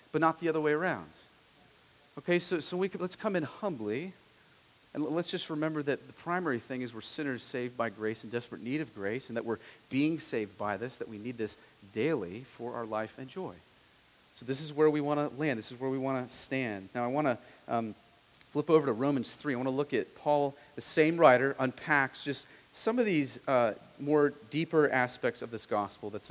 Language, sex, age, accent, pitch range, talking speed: English, male, 40-59, American, 125-160 Hz, 225 wpm